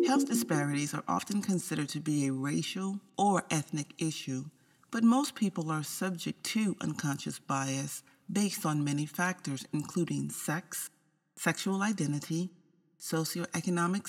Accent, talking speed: American, 125 wpm